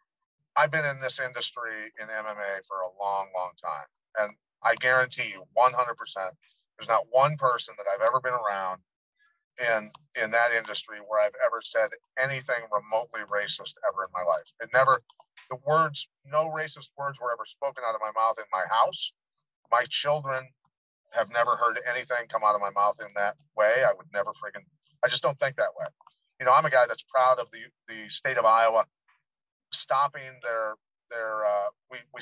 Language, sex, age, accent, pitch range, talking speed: English, male, 40-59, American, 110-150 Hz, 185 wpm